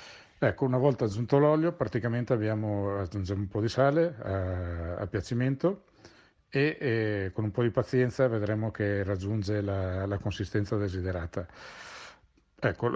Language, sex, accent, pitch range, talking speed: Italian, male, native, 100-120 Hz, 140 wpm